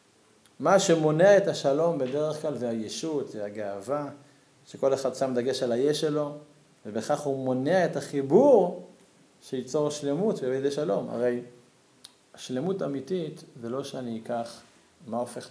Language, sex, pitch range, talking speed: Hebrew, male, 115-145 Hz, 135 wpm